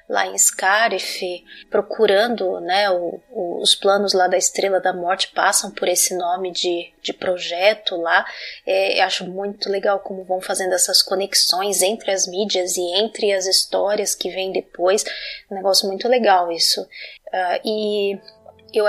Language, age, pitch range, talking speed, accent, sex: Portuguese, 20-39, 195-235 Hz, 145 wpm, Brazilian, female